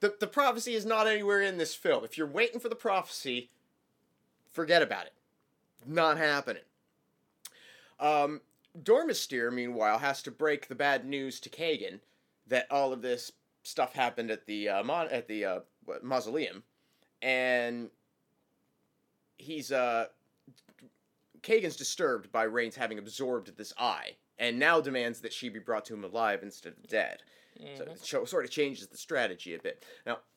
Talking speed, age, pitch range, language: 155 wpm, 30-49, 120-185 Hz, English